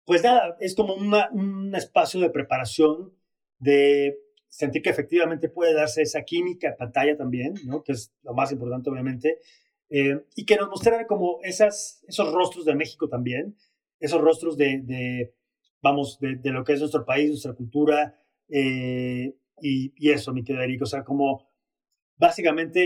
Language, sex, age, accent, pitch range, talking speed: Spanish, male, 30-49, Mexican, 140-165 Hz, 165 wpm